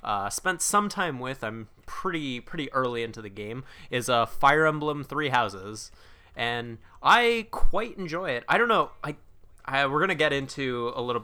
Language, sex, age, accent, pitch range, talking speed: English, male, 20-39, American, 105-135 Hz, 185 wpm